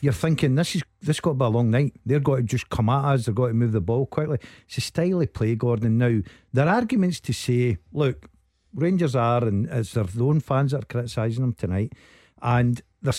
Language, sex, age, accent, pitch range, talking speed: English, male, 50-69, British, 110-145 Hz, 225 wpm